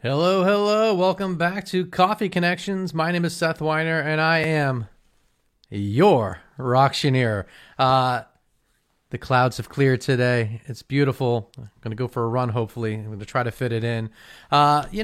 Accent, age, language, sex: American, 30-49, English, male